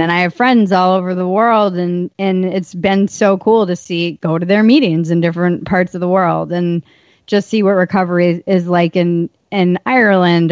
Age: 30-49